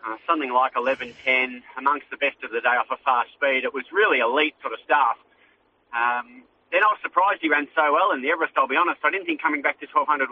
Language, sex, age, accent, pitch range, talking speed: English, male, 30-49, Australian, 145-205 Hz, 250 wpm